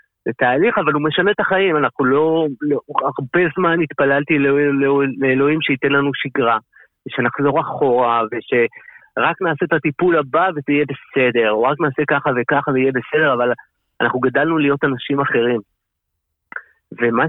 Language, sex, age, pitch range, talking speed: Hebrew, male, 30-49, 120-150 Hz, 155 wpm